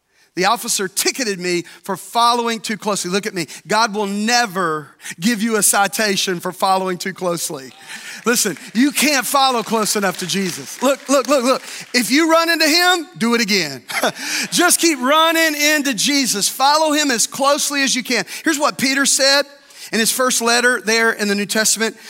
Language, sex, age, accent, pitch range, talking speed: English, male, 40-59, American, 195-260 Hz, 180 wpm